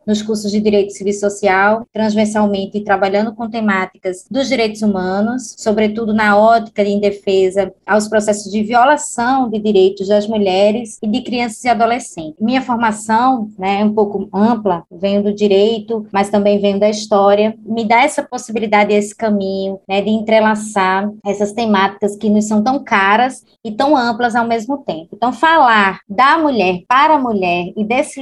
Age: 20-39